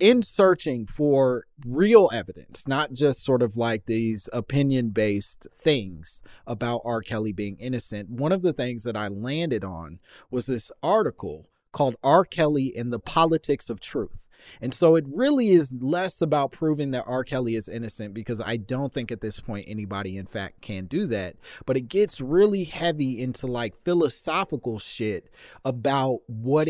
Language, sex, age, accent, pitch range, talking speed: English, male, 30-49, American, 115-150 Hz, 165 wpm